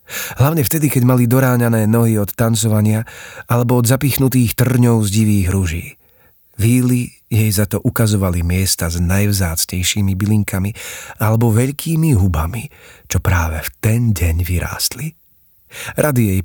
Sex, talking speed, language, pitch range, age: male, 130 wpm, Slovak, 90-115 Hz, 40-59